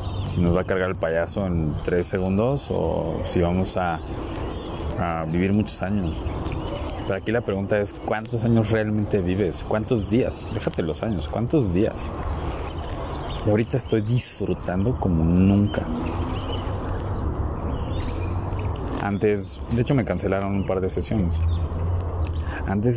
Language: Spanish